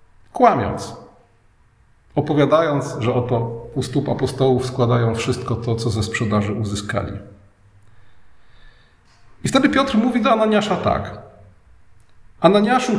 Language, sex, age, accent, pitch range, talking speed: Polish, male, 40-59, native, 110-170 Hz, 100 wpm